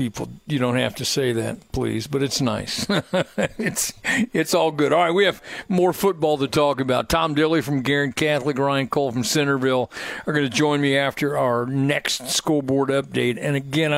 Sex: male